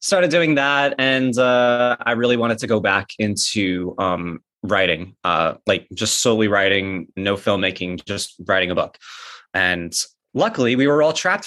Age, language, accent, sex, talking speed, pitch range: 20-39, English, American, male, 160 wpm, 105-130 Hz